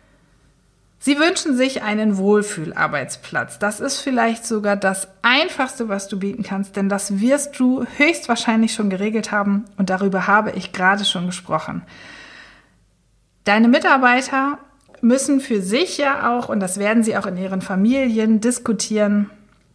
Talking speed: 145 wpm